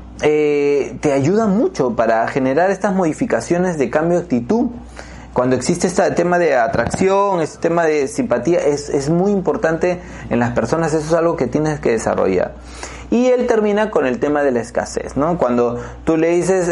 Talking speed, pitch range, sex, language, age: 180 wpm, 130-190 Hz, male, Spanish, 30-49